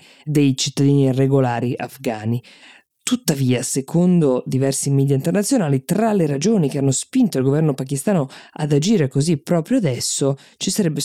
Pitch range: 130-150 Hz